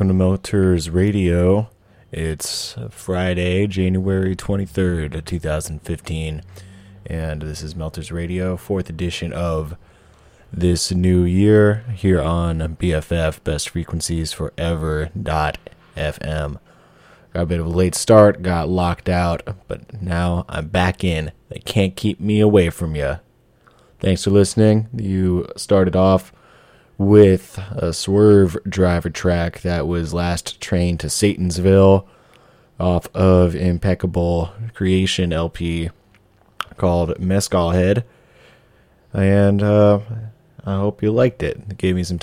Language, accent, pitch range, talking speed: English, American, 85-95 Hz, 120 wpm